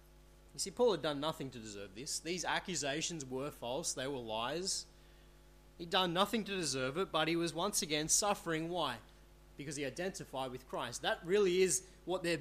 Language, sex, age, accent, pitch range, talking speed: English, male, 20-39, Australian, 140-185 Hz, 190 wpm